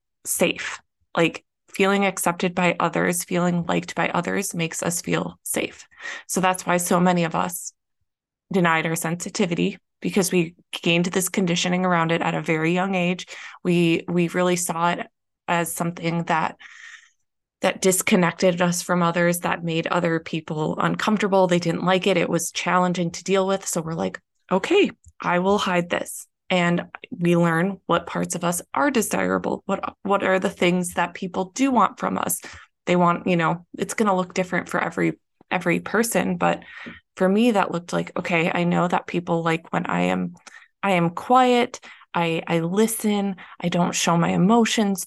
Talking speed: 175 wpm